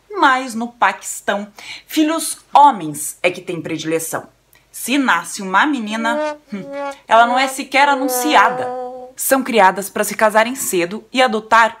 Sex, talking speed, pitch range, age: female, 135 wpm, 180-255 Hz, 20-39